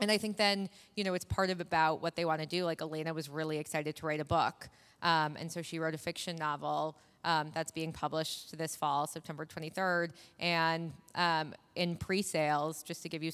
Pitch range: 155-175 Hz